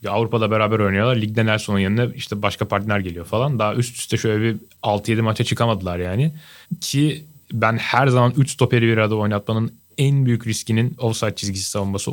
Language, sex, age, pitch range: Turkish, male, 30-49, 100-120 Hz